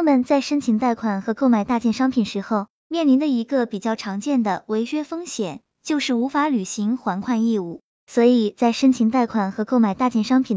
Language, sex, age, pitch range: Chinese, male, 20-39, 220-280 Hz